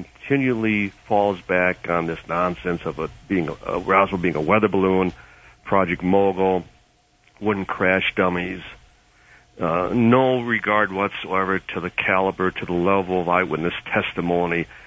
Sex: male